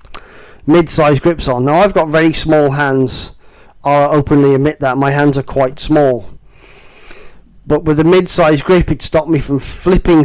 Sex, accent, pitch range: male, British, 135-155 Hz